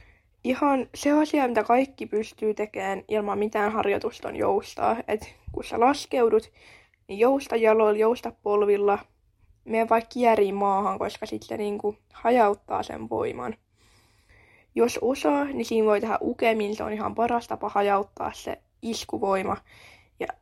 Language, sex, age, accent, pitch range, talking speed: Finnish, female, 10-29, native, 200-235 Hz, 135 wpm